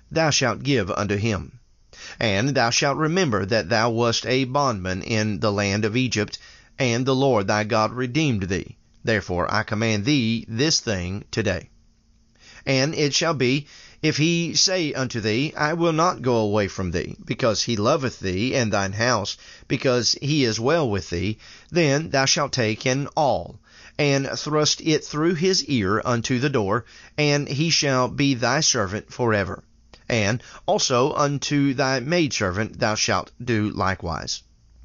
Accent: American